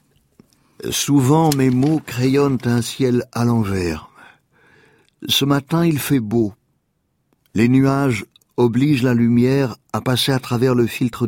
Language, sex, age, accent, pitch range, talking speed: French, male, 60-79, French, 110-130 Hz, 135 wpm